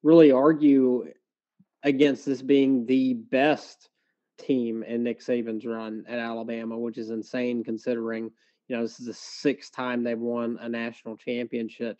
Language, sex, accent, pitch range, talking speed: English, male, American, 115-135 Hz, 150 wpm